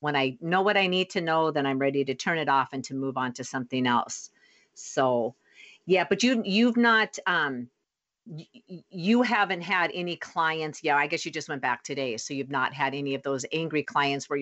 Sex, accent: female, American